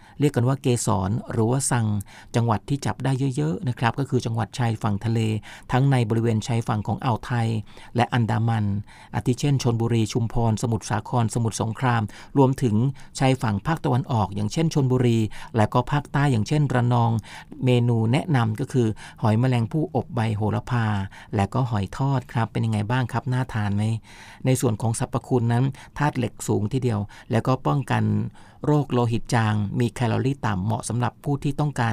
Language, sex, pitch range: Thai, male, 110-130 Hz